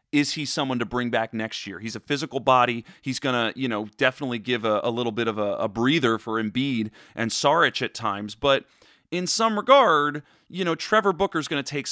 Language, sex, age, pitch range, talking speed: English, male, 30-49, 120-160 Hz, 220 wpm